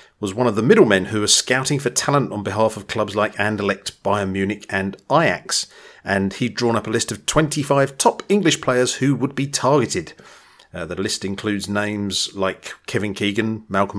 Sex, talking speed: male, 190 wpm